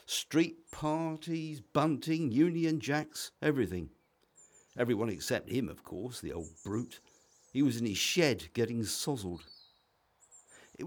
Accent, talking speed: British, 120 wpm